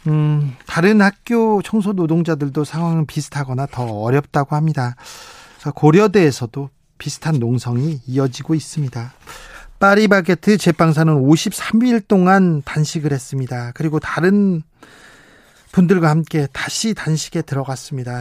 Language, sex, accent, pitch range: Korean, male, native, 135-170 Hz